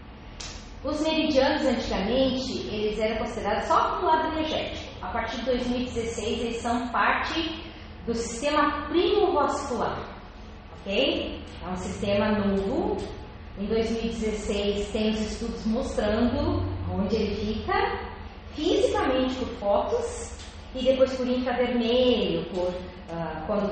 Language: Portuguese